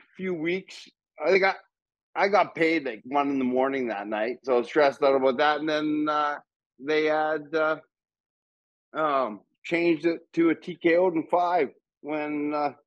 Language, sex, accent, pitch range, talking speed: English, male, American, 130-160 Hz, 170 wpm